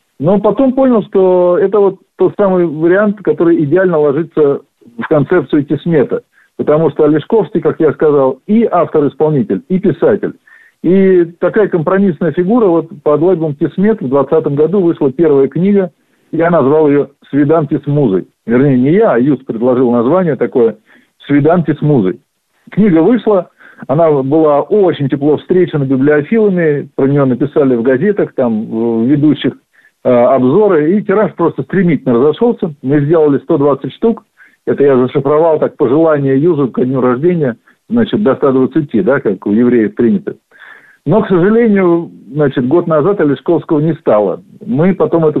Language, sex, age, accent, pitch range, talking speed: Russian, male, 50-69, native, 135-180 Hz, 145 wpm